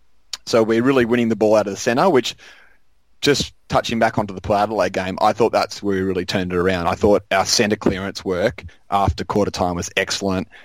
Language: English